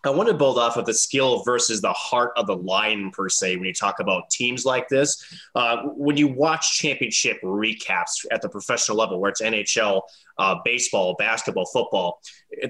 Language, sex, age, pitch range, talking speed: English, male, 20-39, 115-145 Hz, 195 wpm